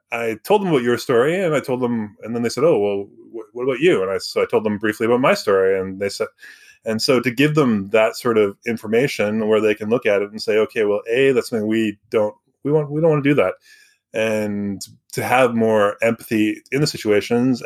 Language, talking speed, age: English, 245 wpm, 20-39